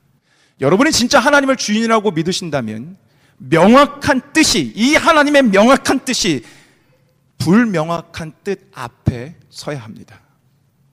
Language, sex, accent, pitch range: Korean, male, native, 140-230 Hz